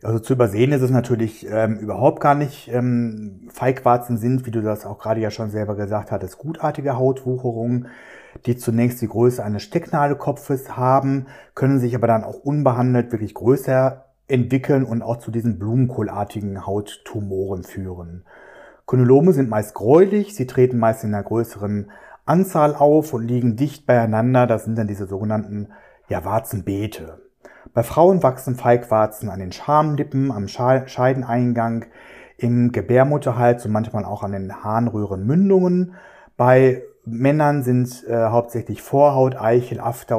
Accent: German